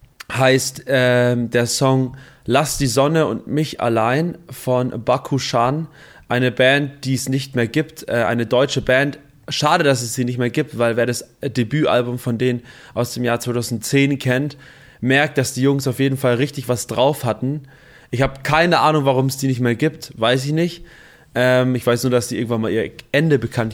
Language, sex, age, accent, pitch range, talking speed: German, male, 20-39, German, 125-140 Hz, 190 wpm